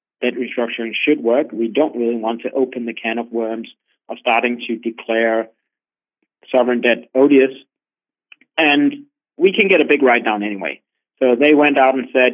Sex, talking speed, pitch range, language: male, 175 wpm, 115-135 Hz, English